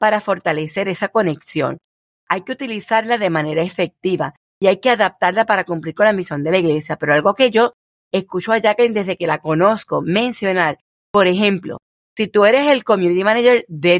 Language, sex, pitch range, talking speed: Spanish, female, 170-235 Hz, 185 wpm